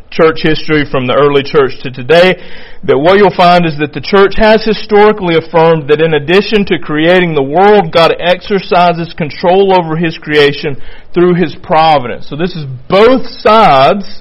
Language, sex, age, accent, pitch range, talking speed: English, male, 40-59, American, 140-170 Hz, 170 wpm